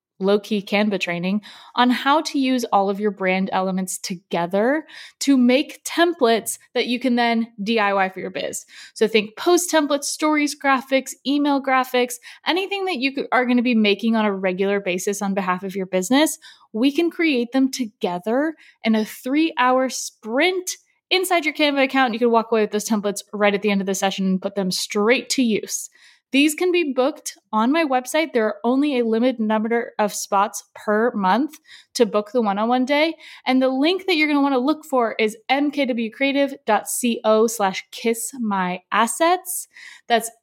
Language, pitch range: English, 205-275 Hz